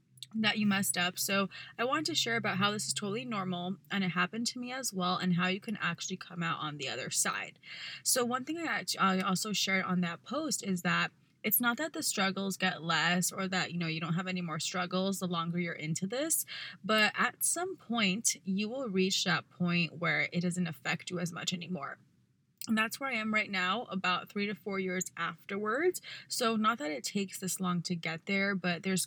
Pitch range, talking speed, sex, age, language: 175-205 Hz, 225 wpm, female, 20-39, English